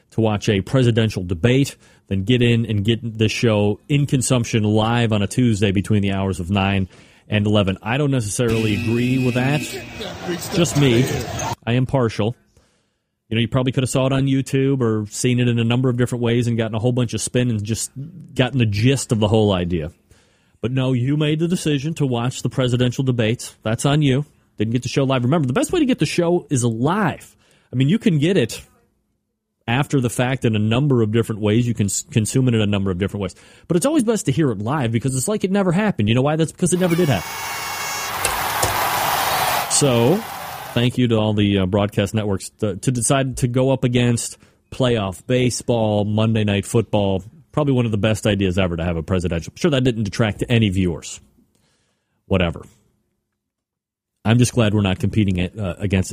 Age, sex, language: 30-49, male, English